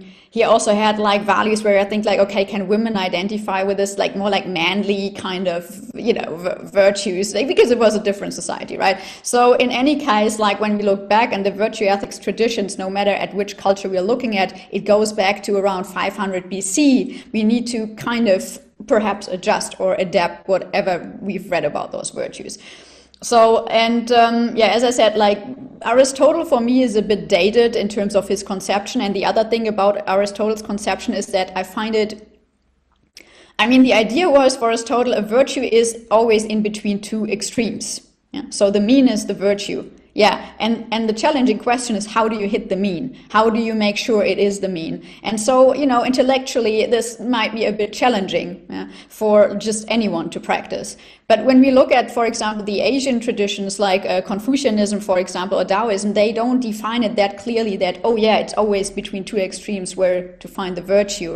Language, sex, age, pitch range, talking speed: English, female, 30-49, 195-230 Hz, 200 wpm